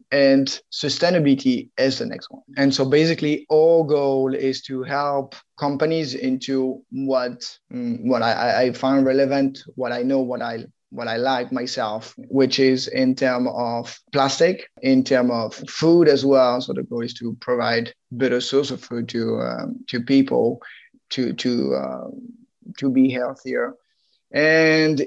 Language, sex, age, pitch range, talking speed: English, male, 20-39, 125-150 Hz, 155 wpm